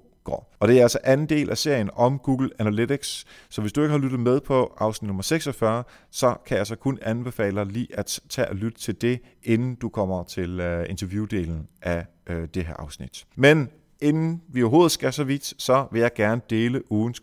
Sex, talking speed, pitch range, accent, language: male, 200 wpm, 95-140 Hz, native, Danish